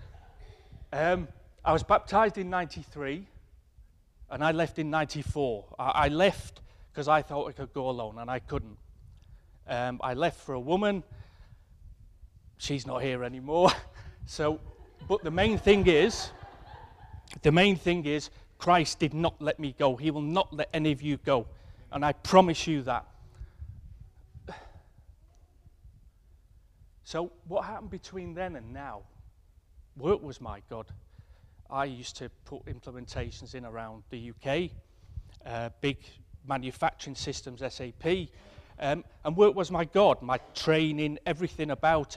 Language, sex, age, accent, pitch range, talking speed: English, male, 30-49, British, 100-155 Hz, 140 wpm